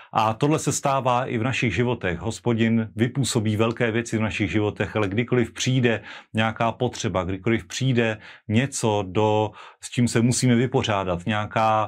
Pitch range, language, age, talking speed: 105-120 Hz, Slovak, 30-49, 145 wpm